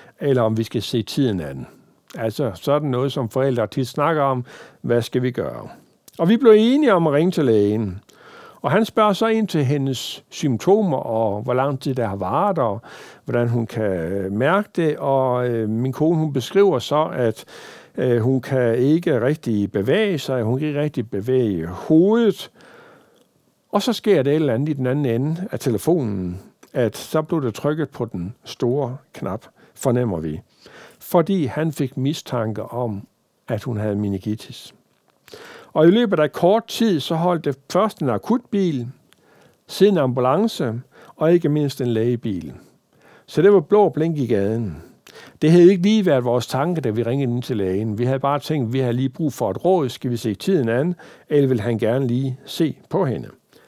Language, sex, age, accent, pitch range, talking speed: Danish, male, 60-79, native, 115-160 Hz, 185 wpm